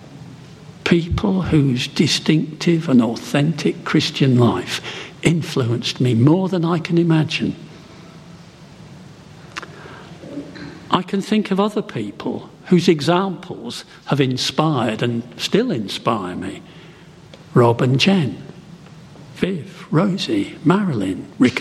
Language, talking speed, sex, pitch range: English, 95 wpm, male, 140-175 Hz